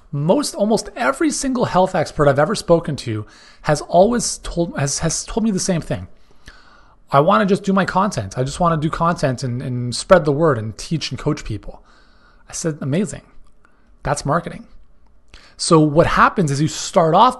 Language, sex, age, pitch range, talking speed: English, male, 30-49, 135-195 Hz, 185 wpm